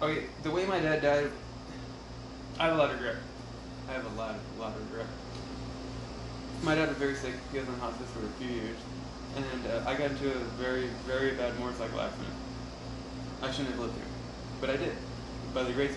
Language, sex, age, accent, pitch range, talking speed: English, male, 20-39, American, 125-135 Hz, 205 wpm